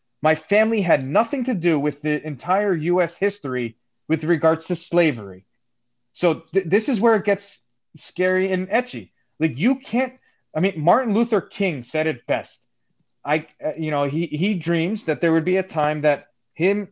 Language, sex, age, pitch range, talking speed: English, male, 30-49, 145-195 Hz, 170 wpm